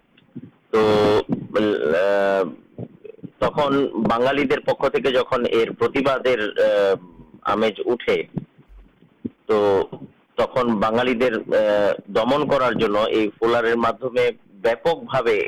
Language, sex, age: Urdu, male, 50-69